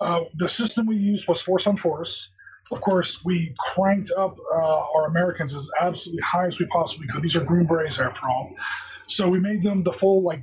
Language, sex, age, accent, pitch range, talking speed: English, male, 30-49, American, 160-205 Hz, 205 wpm